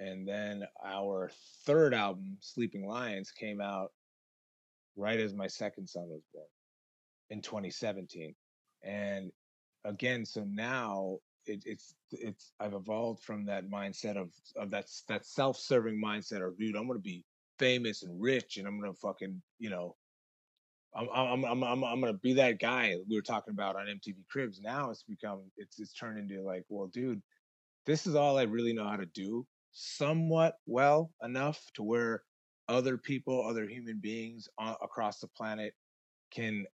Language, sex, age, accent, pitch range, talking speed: English, male, 30-49, American, 95-120 Hz, 165 wpm